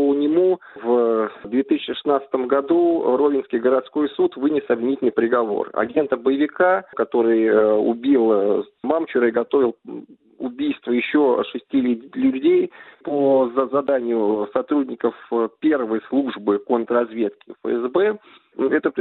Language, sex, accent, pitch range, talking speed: Russian, male, native, 125-165 Hz, 95 wpm